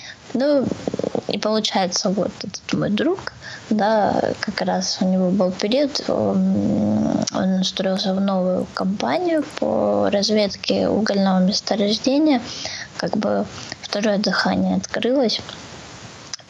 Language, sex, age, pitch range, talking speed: Russian, female, 20-39, 190-240 Hz, 105 wpm